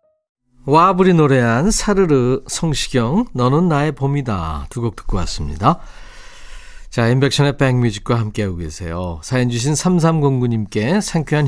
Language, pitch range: Korean, 105-150 Hz